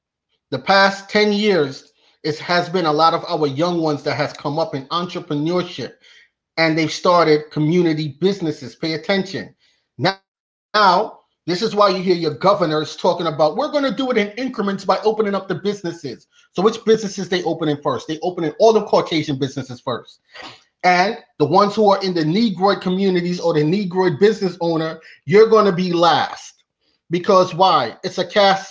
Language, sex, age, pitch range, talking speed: English, male, 30-49, 170-210 Hz, 185 wpm